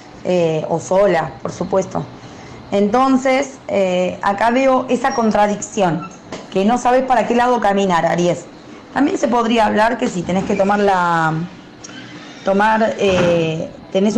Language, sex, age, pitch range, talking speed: Spanish, female, 20-39, 185-235 Hz, 135 wpm